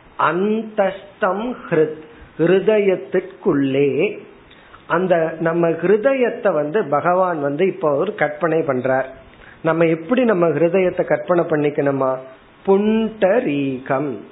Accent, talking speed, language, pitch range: native, 75 wpm, Tamil, 145-200 Hz